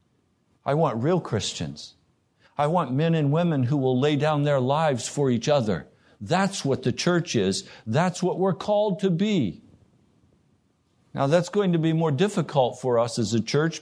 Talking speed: 180 wpm